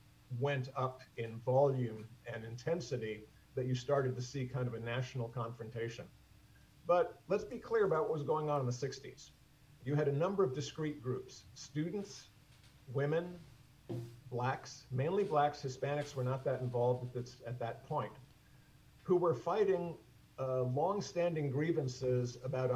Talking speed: 150 wpm